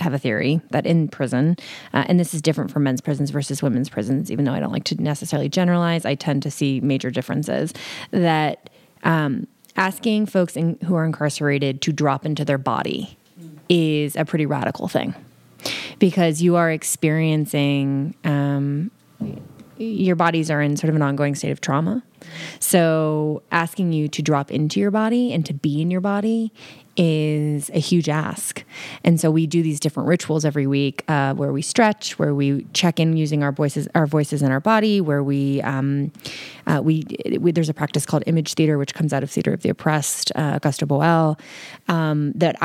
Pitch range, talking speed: 145-170 Hz, 185 wpm